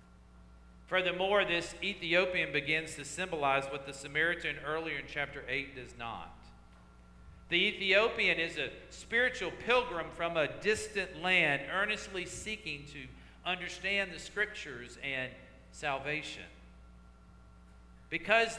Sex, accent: male, American